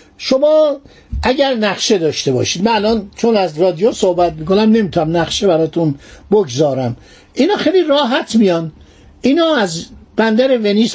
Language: Persian